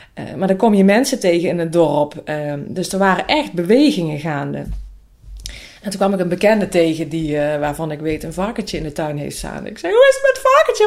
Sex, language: female, Dutch